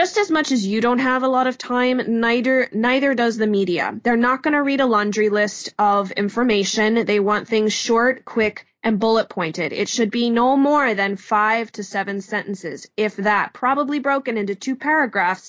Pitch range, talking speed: 205-255 Hz, 200 wpm